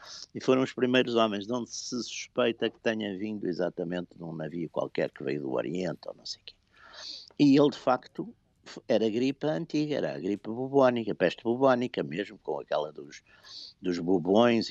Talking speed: 180 wpm